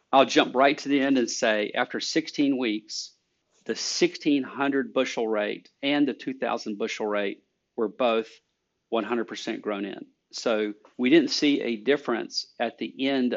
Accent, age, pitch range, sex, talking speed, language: American, 40-59, 105-130 Hz, male, 155 wpm, English